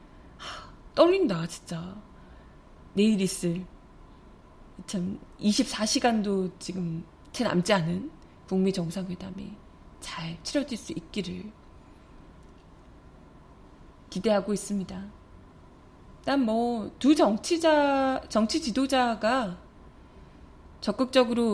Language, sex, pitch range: Korean, female, 190-265 Hz